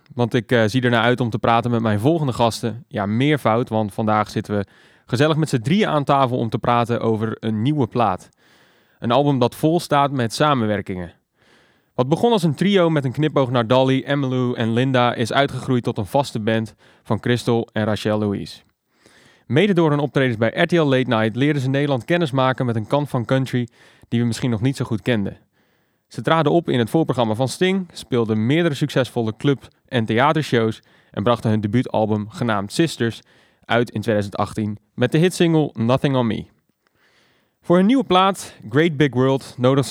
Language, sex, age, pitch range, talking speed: Dutch, male, 20-39, 115-140 Hz, 190 wpm